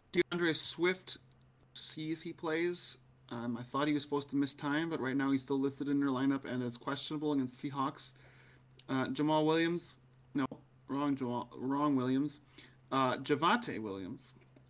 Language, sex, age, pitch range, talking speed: English, male, 30-49, 130-150 Hz, 165 wpm